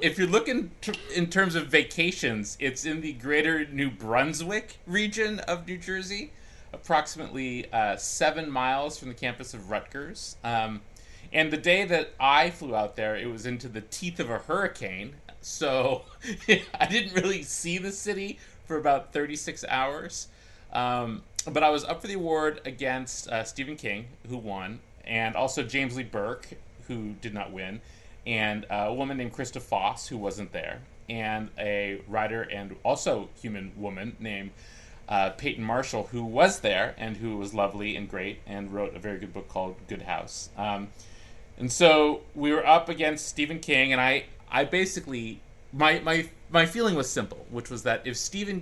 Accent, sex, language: American, male, English